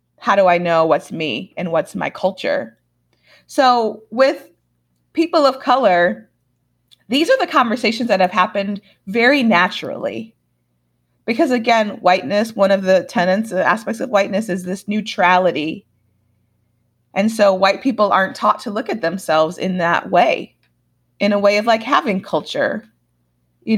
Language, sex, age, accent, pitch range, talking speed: English, female, 30-49, American, 155-230 Hz, 150 wpm